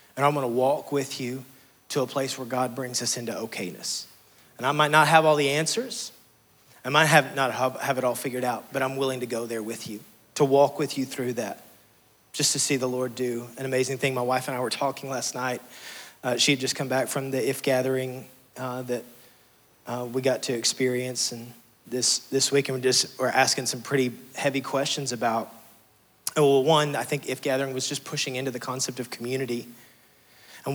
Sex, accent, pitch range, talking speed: male, American, 125-145 Hz, 215 wpm